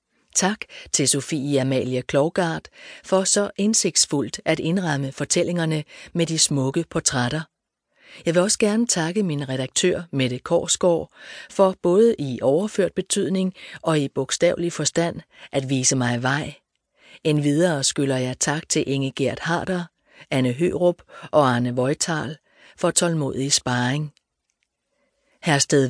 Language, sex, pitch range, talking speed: Danish, female, 135-180 Hz, 125 wpm